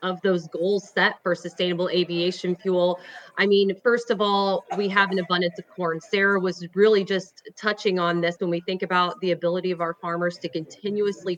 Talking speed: 195 wpm